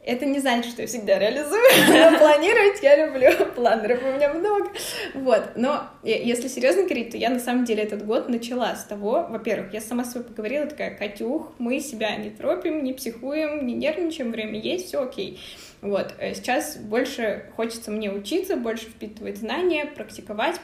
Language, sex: Russian, female